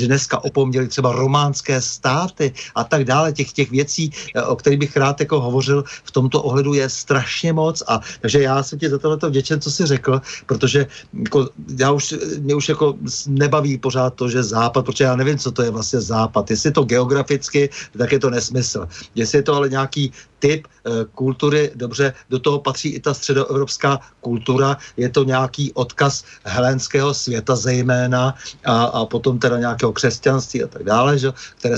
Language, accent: Czech, native